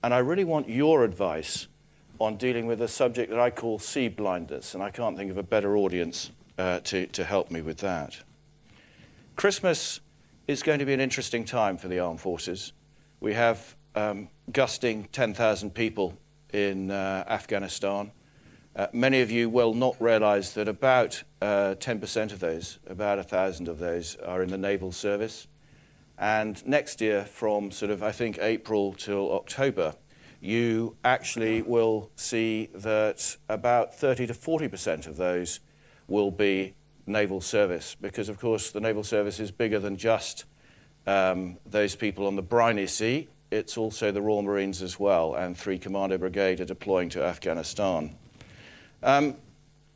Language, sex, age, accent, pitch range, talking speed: English, male, 50-69, British, 100-120 Hz, 160 wpm